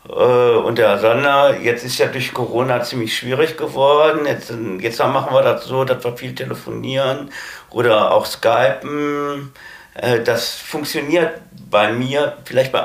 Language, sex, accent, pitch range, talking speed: German, male, German, 130-195 Hz, 140 wpm